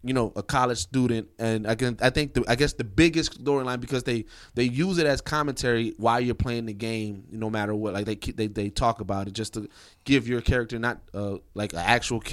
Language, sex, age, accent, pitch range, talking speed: English, male, 20-39, American, 105-130 Hz, 245 wpm